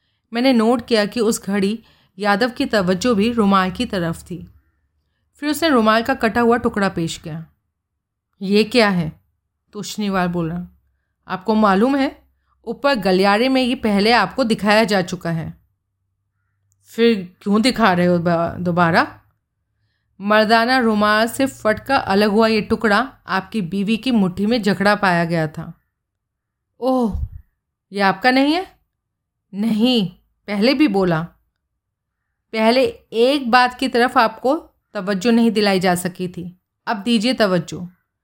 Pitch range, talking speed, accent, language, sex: 170-230 Hz, 140 wpm, native, Hindi, female